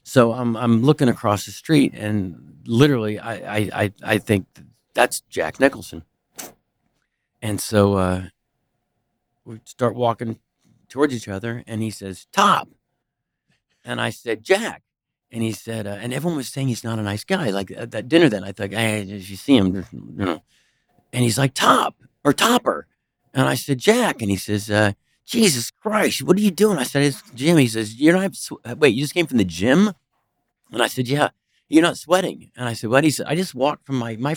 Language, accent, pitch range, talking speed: English, American, 105-140 Hz, 200 wpm